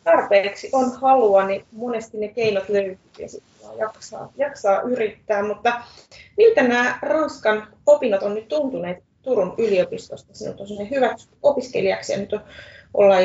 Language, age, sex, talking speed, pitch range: Finnish, 30-49, female, 140 wpm, 185-240 Hz